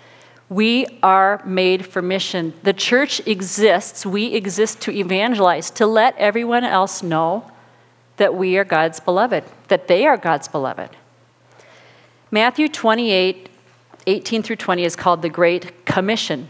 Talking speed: 135 wpm